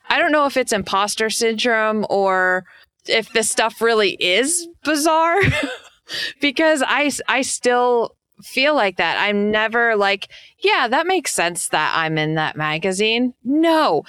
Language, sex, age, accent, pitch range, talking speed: English, female, 20-39, American, 195-250 Hz, 145 wpm